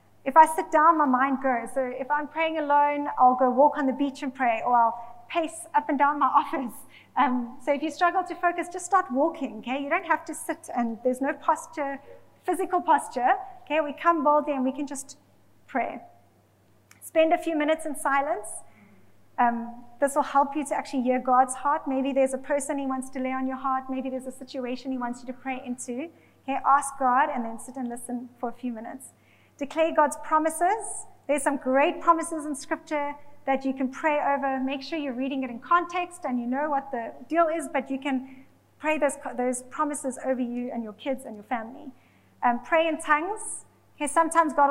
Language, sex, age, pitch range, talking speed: English, female, 30-49, 255-310 Hz, 210 wpm